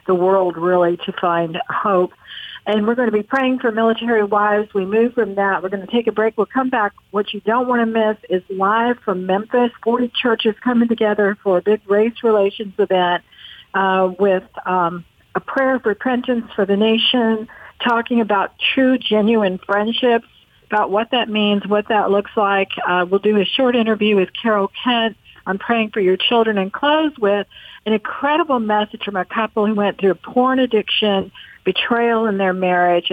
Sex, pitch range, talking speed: female, 185-225 Hz, 185 wpm